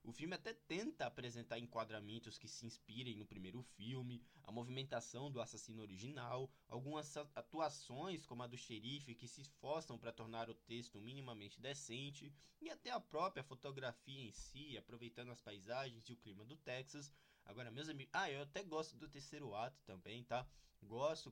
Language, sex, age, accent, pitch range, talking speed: Portuguese, male, 20-39, Brazilian, 115-145 Hz, 170 wpm